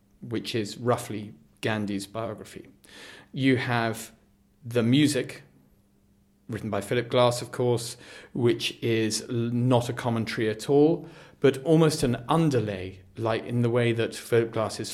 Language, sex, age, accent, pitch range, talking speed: English, male, 40-59, British, 110-135 Hz, 135 wpm